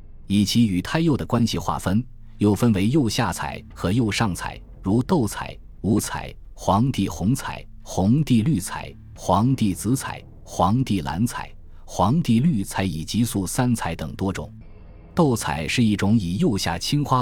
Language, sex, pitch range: Chinese, male, 85-115 Hz